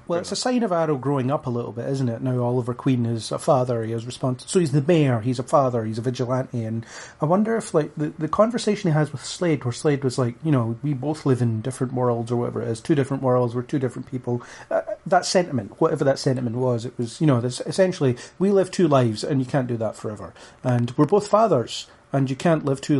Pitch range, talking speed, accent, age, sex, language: 125-155 Hz, 260 wpm, British, 30-49, male, English